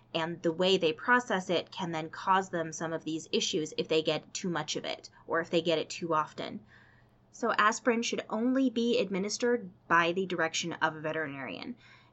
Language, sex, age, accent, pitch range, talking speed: English, female, 20-39, American, 170-220 Hz, 200 wpm